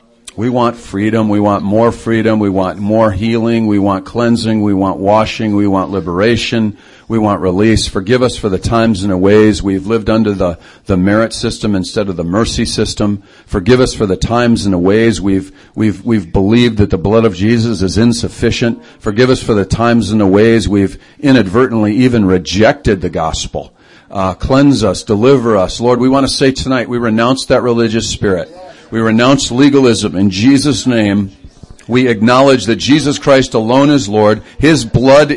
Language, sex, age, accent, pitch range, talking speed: English, male, 50-69, American, 105-140 Hz, 185 wpm